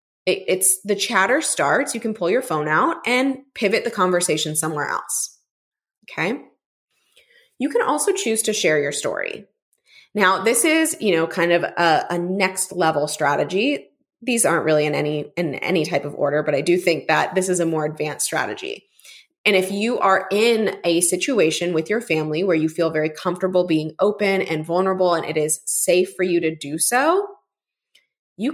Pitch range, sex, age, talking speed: 165-230 Hz, female, 20-39, 185 wpm